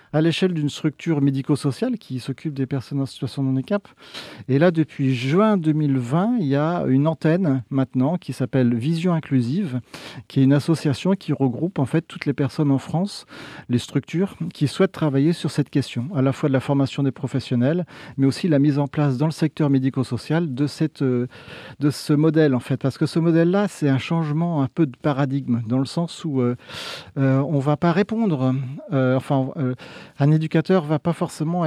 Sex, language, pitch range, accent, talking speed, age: male, French, 135-170 Hz, French, 200 wpm, 40-59